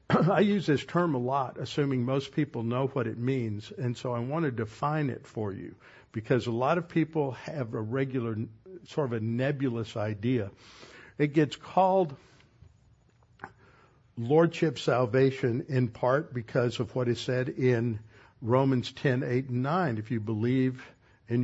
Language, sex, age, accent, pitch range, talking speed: English, male, 60-79, American, 120-140 Hz, 155 wpm